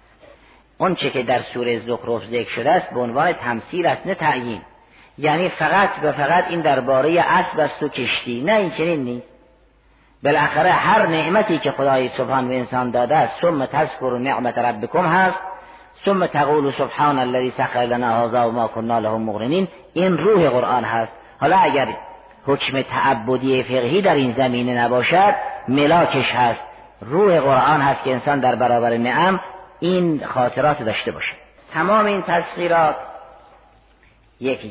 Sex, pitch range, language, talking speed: female, 120-160 Hz, Persian, 145 wpm